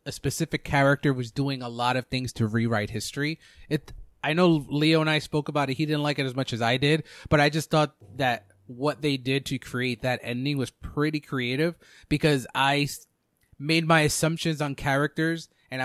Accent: American